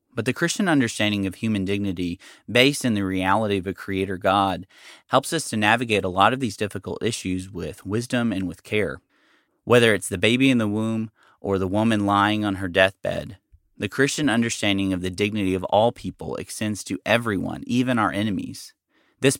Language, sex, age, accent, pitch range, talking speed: English, male, 30-49, American, 95-115 Hz, 185 wpm